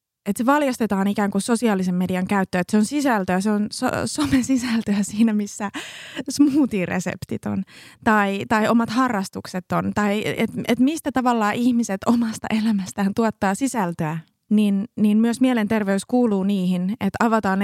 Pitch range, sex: 195-230 Hz, female